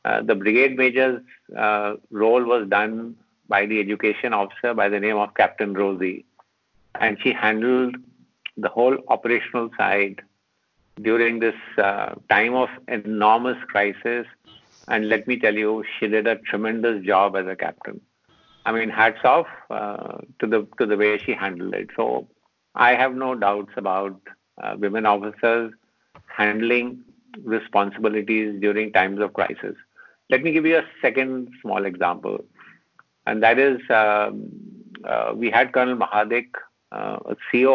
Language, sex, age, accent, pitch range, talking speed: English, male, 50-69, Indian, 105-125 Hz, 145 wpm